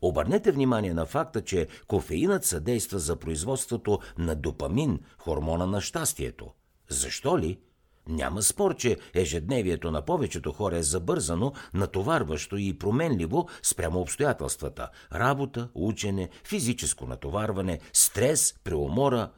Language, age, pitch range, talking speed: Bulgarian, 60-79, 85-125 Hz, 115 wpm